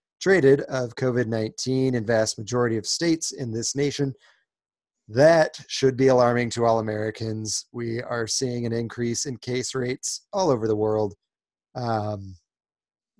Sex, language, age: male, English, 30-49